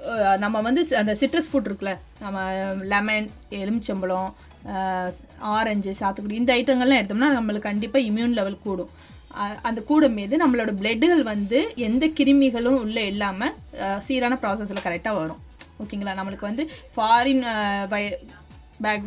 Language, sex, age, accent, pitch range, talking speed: Tamil, female, 20-39, native, 190-250 Hz, 120 wpm